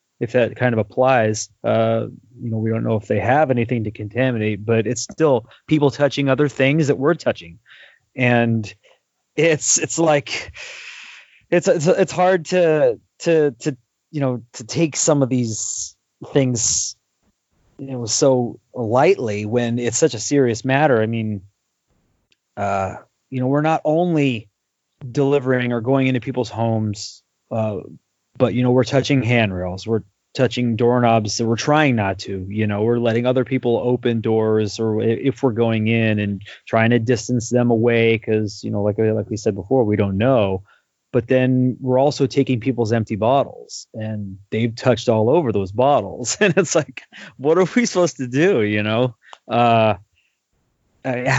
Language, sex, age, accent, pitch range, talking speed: English, male, 30-49, American, 110-140 Hz, 165 wpm